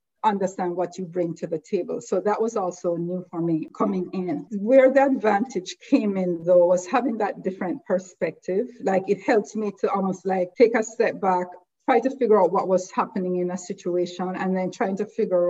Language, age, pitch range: English, 50-69, 175-205 Hz